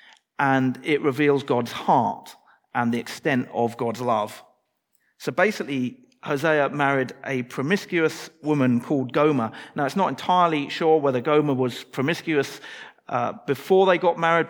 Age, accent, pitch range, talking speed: 40-59, British, 130-165 Hz, 140 wpm